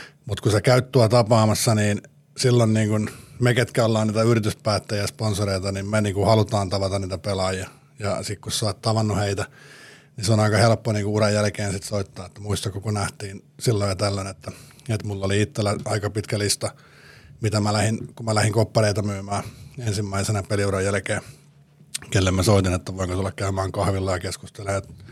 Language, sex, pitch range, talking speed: Finnish, male, 100-120 Hz, 175 wpm